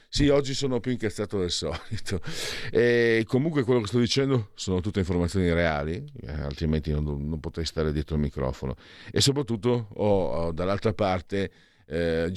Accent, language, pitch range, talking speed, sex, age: native, Italian, 80-105 Hz, 160 wpm, male, 50-69